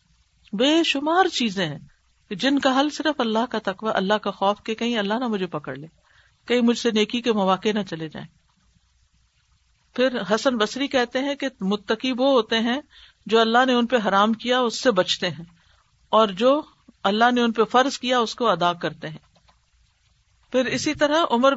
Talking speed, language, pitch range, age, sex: 190 wpm, Urdu, 205-260 Hz, 50-69, female